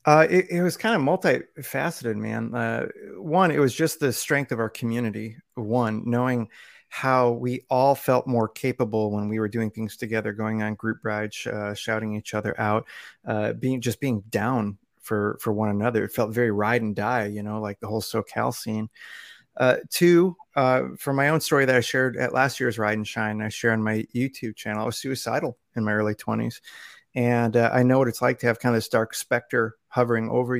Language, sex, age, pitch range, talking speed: English, male, 30-49, 110-130 Hz, 215 wpm